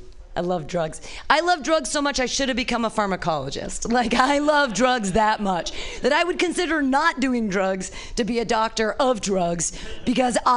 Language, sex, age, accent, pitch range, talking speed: English, female, 30-49, American, 190-285 Hz, 185 wpm